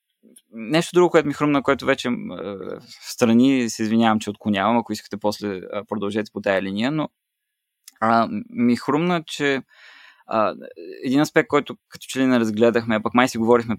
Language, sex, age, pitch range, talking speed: Bulgarian, male, 20-39, 115-145 Hz, 175 wpm